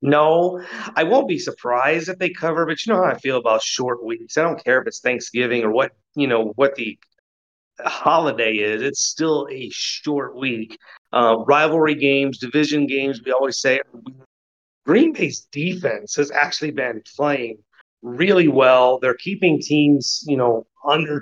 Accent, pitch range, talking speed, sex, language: American, 120-150 Hz, 165 wpm, male, English